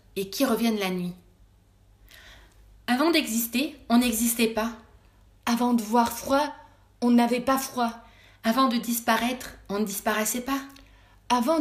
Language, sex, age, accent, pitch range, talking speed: French, female, 30-49, French, 215-265 Hz, 135 wpm